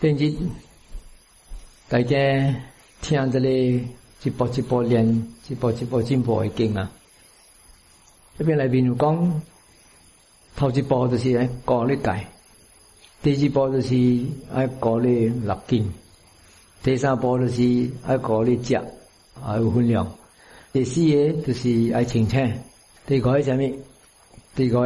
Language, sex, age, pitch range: English, male, 50-69, 115-140 Hz